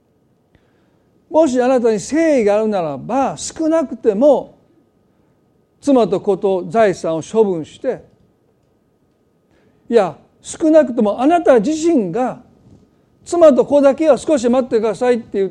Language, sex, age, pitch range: Japanese, male, 50-69, 195-275 Hz